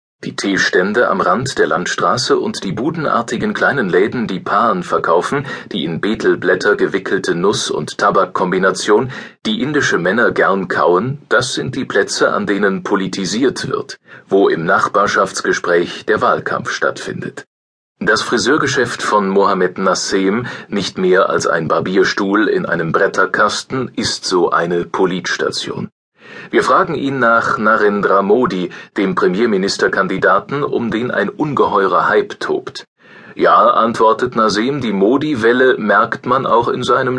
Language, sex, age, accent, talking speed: German, male, 40-59, German, 130 wpm